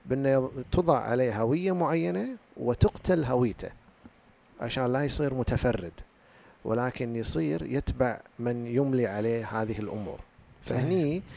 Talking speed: 105 wpm